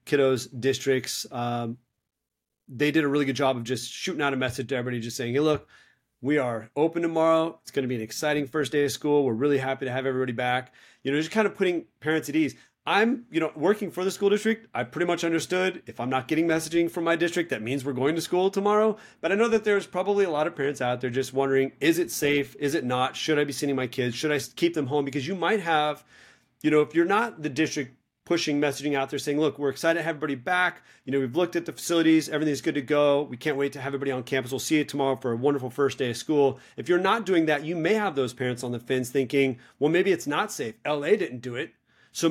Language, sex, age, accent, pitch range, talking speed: English, male, 30-49, American, 130-165 Hz, 265 wpm